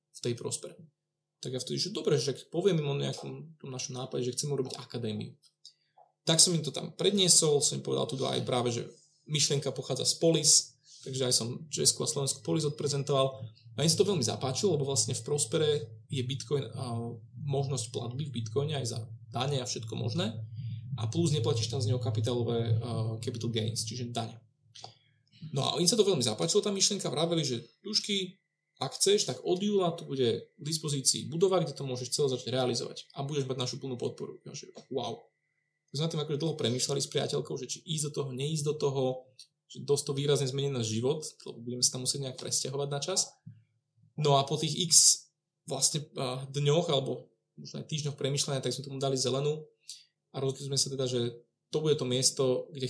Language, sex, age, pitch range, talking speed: Czech, male, 20-39, 125-155 Hz, 195 wpm